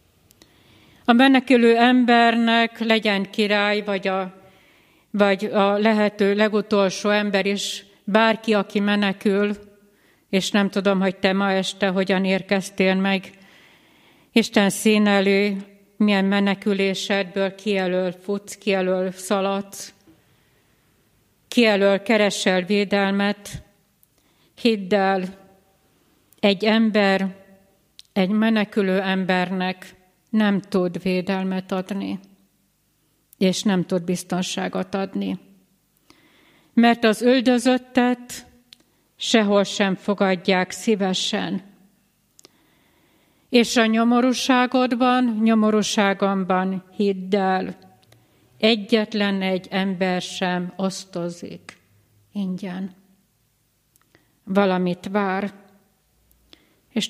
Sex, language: female, Hungarian